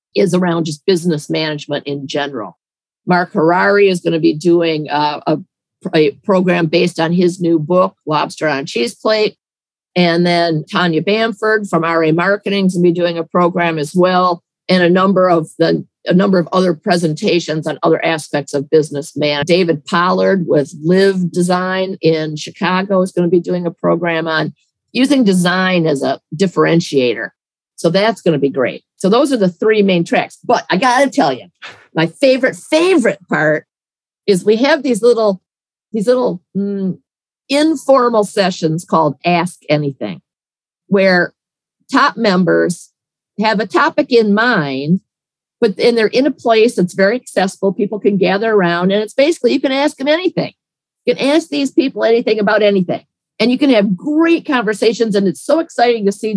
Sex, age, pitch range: female, 50-69, 165-220 Hz